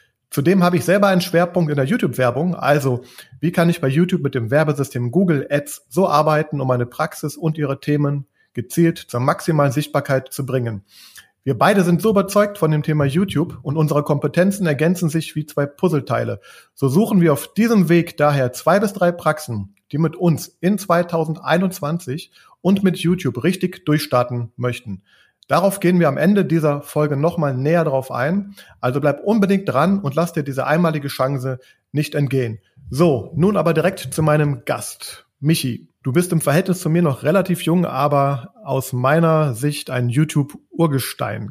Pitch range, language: 140-175 Hz, German